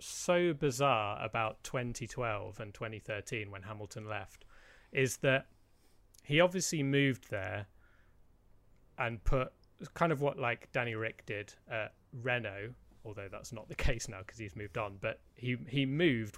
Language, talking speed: English, 145 wpm